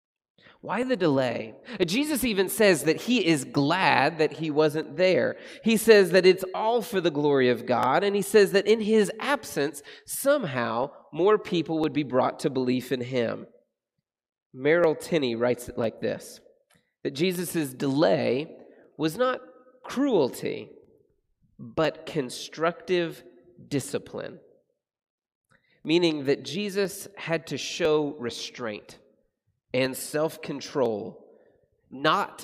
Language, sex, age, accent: English, male, 30-49, American